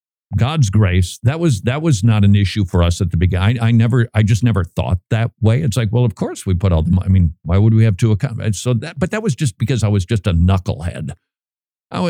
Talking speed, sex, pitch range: 275 wpm, male, 105-150 Hz